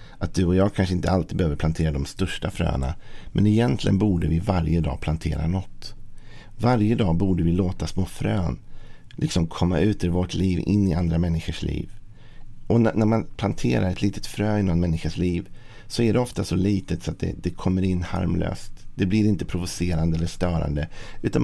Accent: native